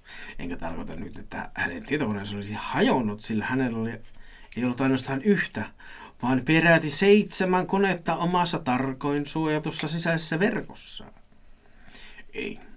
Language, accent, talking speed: Finnish, native, 115 wpm